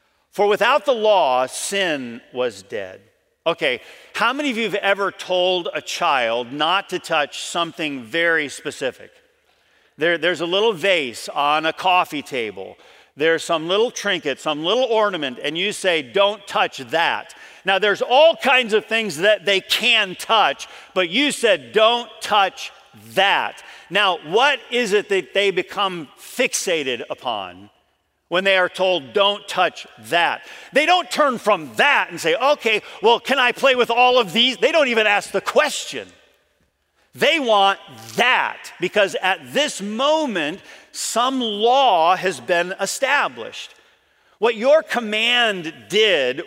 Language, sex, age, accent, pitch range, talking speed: English, male, 50-69, American, 185-250 Hz, 145 wpm